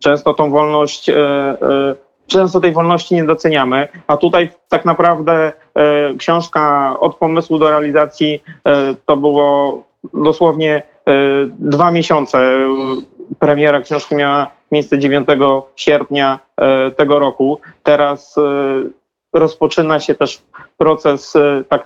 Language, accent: Polish, native